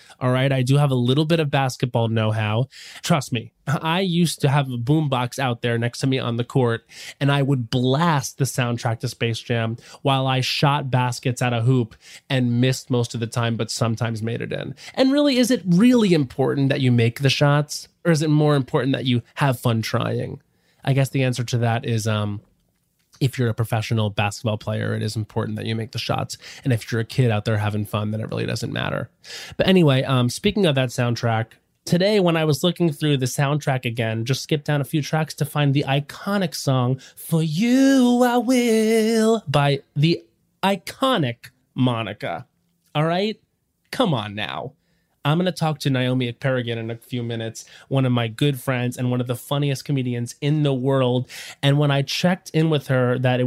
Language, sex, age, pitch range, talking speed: English, male, 20-39, 120-150 Hz, 210 wpm